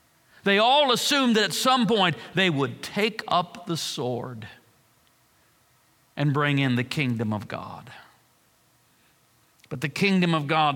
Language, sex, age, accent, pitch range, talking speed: English, male, 50-69, American, 145-185 Hz, 140 wpm